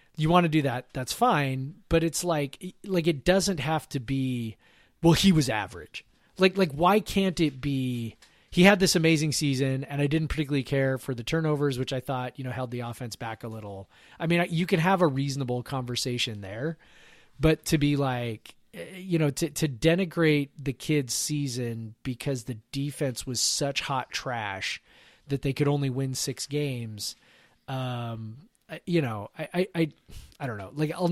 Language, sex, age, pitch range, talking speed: English, male, 30-49, 120-160 Hz, 185 wpm